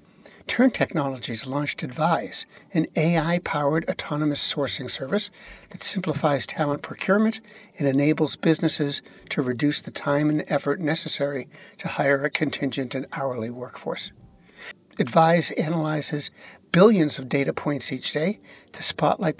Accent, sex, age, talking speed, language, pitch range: American, male, 60-79, 125 wpm, English, 145-175 Hz